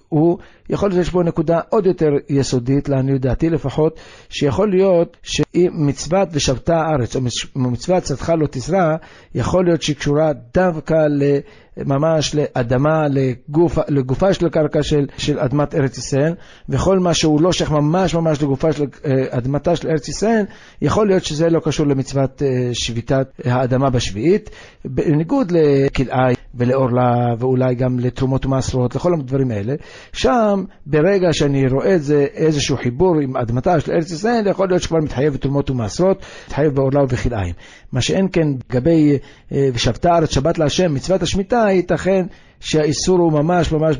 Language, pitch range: Hebrew, 135-170 Hz